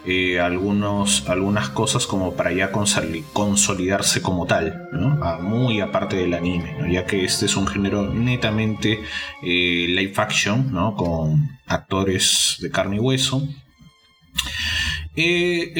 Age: 30-49